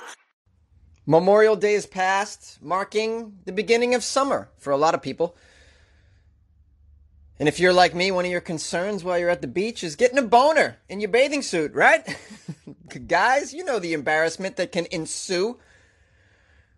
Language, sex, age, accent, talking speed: English, male, 30-49, American, 160 wpm